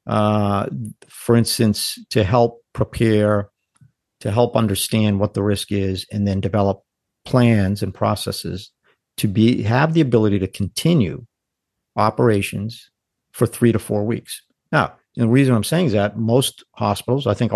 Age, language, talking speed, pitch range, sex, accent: 50-69, English, 145 wpm, 105-125 Hz, male, American